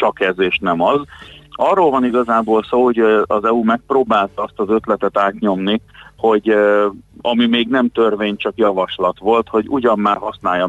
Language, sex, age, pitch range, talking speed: Hungarian, male, 40-59, 95-120 Hz, 165 wpm